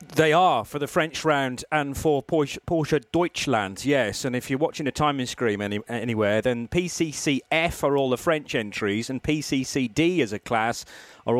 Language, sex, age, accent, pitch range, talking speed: English, male, 40-59, British, 125-160 Hz, 175 wpm